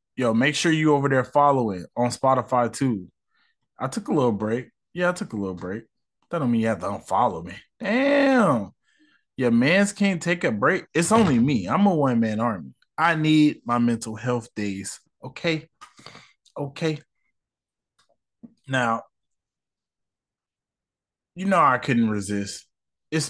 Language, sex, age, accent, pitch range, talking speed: English, male, 20-39, American, 115-160 Hz, 150 wpm